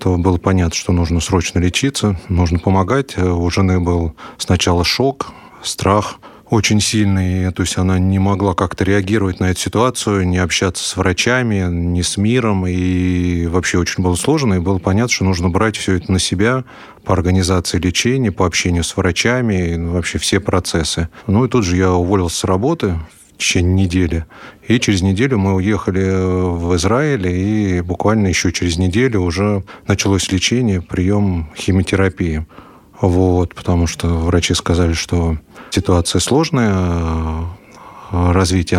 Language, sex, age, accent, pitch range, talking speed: Russian, male, 30-49, native, 90-105 Hz, 150 wpm